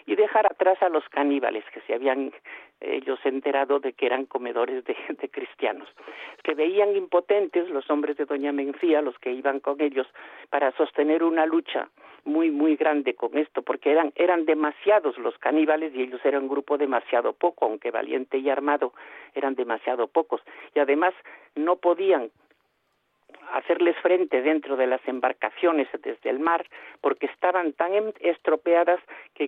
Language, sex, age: Spanish, male, 50-69